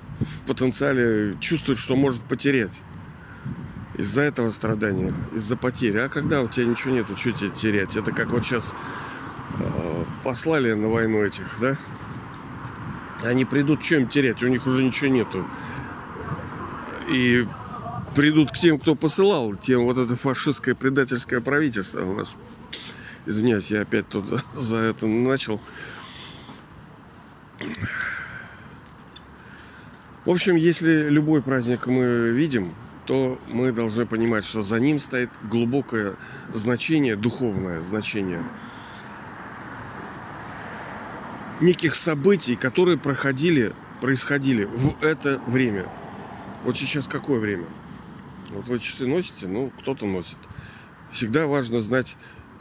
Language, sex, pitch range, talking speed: Russian, male, 110-140 Hz, 115 wpm